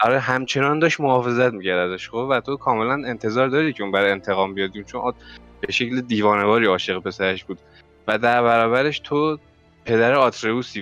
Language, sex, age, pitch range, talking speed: Persian, male, 20-39, 95-115 Hz, 170 wpm